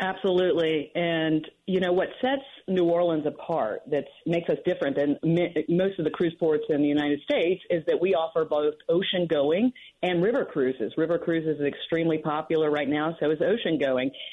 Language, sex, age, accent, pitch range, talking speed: English, female, 40-59, American, 160-195 Hz, 175 wpm